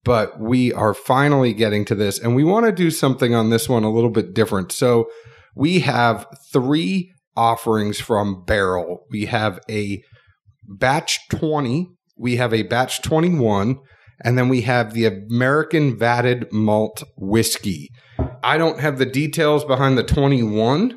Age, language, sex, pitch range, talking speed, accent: 40-59, English, male, 110-135 Hz, 155 wpm, American